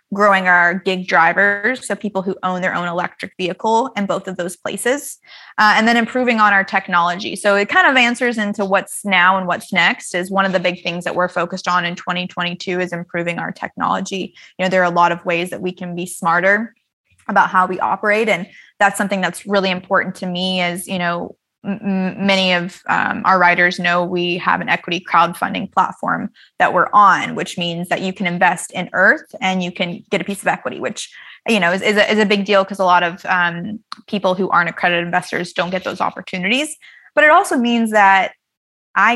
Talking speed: 215 wpm